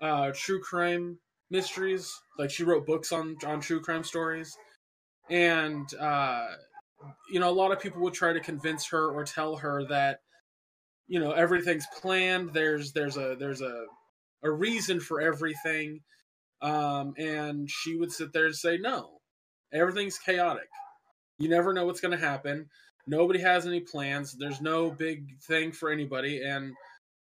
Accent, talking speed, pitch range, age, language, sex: American, 160 wpm, 140-180 Hz, 20-39, English, male